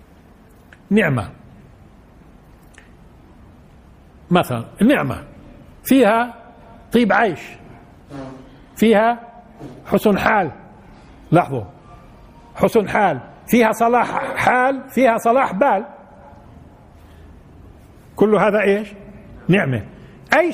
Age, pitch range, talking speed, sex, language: 60-79, 150-235 Hz, 65 wpm, male, Arabic